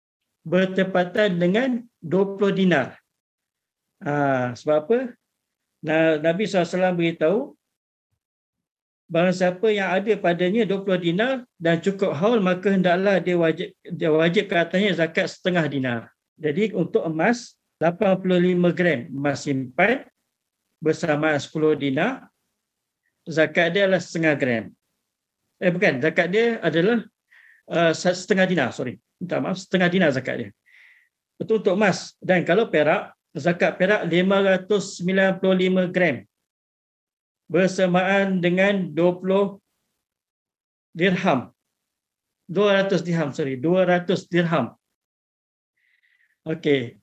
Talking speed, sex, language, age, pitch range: 105 wpm, male, Malay, 50-69, 165-195 Hz